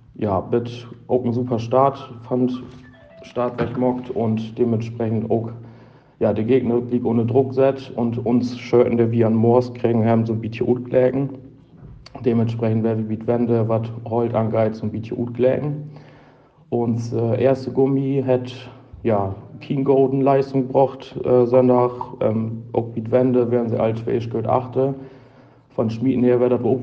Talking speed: 155 wpm